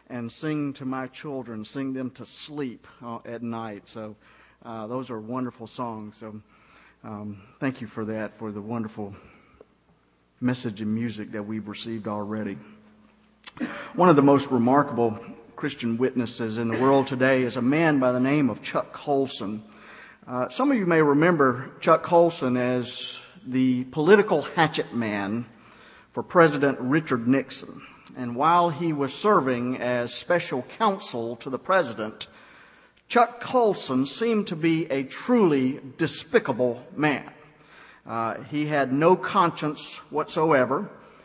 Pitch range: 115-165 Hz